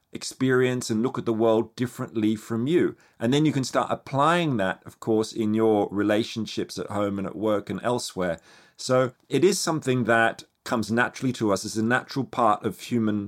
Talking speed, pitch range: 195 wpm, 110-125 Hz